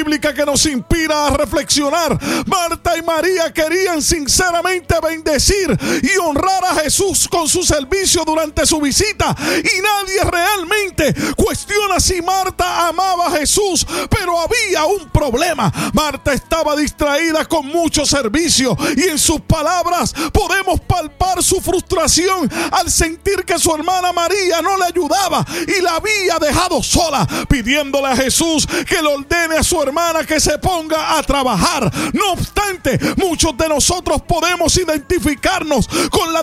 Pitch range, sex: 305-360 Hz, male